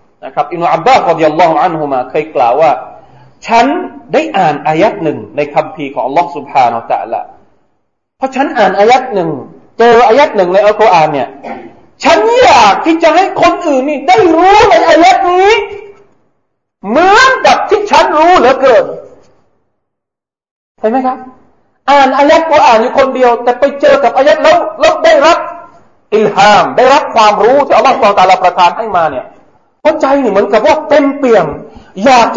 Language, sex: Thai, male